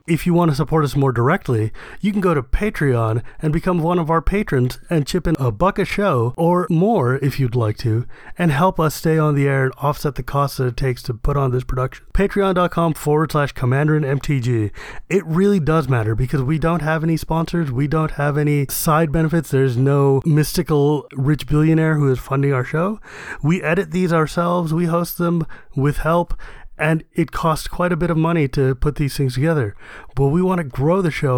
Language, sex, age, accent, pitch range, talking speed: English, male, 30-49, American, 135-170 Hz, 210 wpm